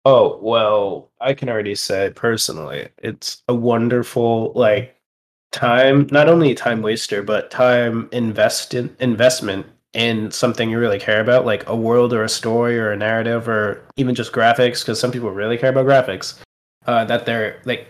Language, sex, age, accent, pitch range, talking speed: English, male, 20-39, American, 115-135 Hz, 170 wpm